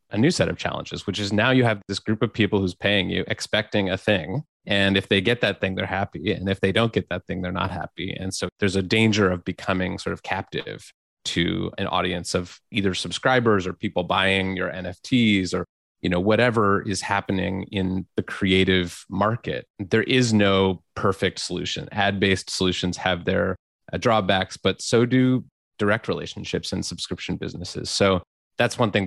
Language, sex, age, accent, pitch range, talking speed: English, male, 30-49, American, 95-105 Hz, 190 wpm